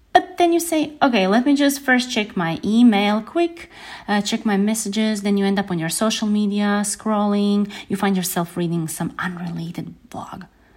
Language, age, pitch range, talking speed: English, 30-49, 190-250 Hz, 180 wpm